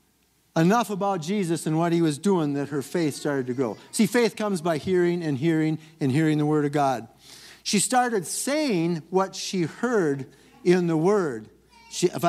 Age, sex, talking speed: 50-69, male, 185 wpm